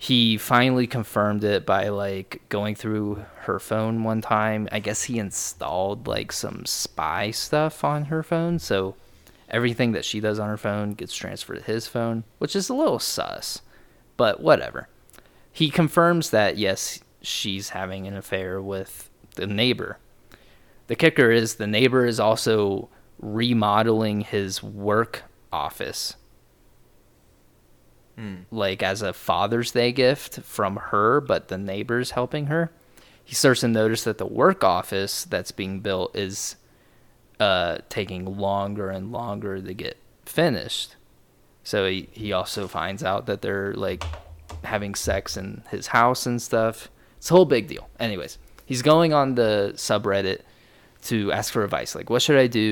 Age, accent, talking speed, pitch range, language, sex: 20-39, American, 155 wpm, 100-120 Hz, English, male